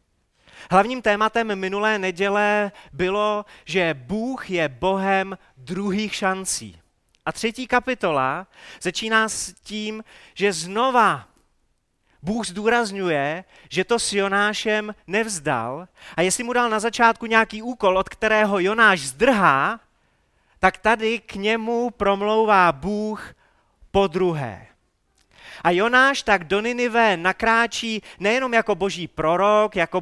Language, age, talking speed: Czech, 30-49, 115 wpm